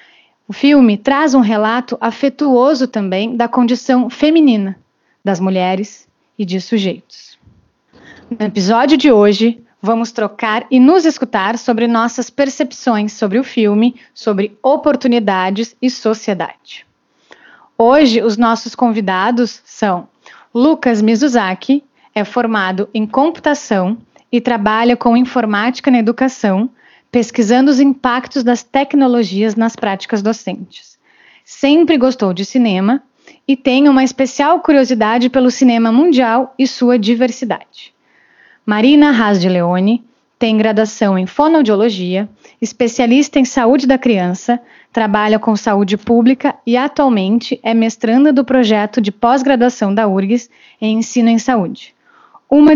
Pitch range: 220-265 Hz